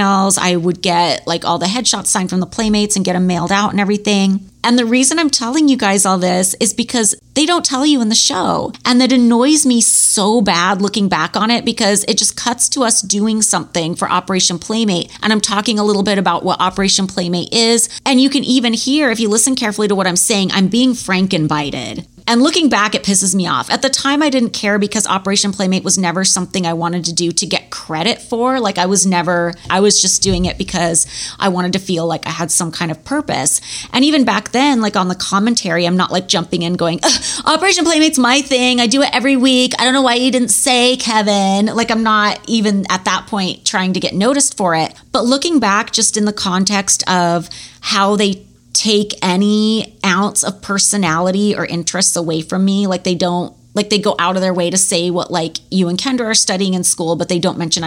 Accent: American